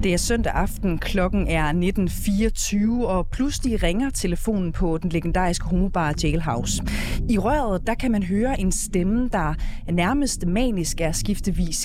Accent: native